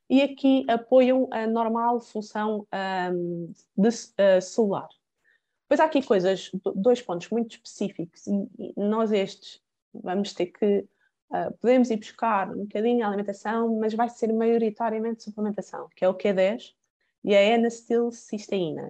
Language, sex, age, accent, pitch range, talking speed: Portuguese, female, 20-39, Brazilian, 185-235 Hz, 145 wpm